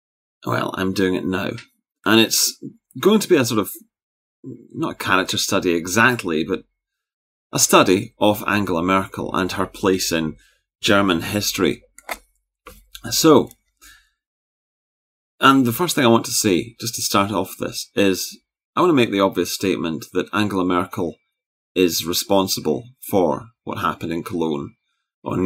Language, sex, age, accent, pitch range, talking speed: English, male, 30-49, British, 90-110 Hz, 150 wpm